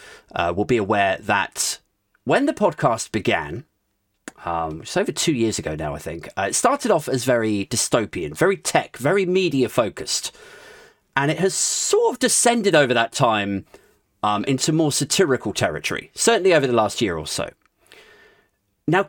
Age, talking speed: 30-49, 160 wpm